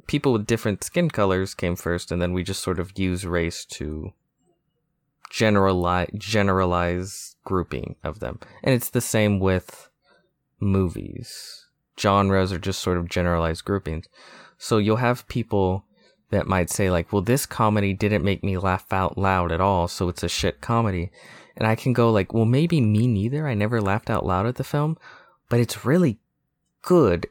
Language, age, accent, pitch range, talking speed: English, 20-39, American, 95-120 Hz, 175 wpm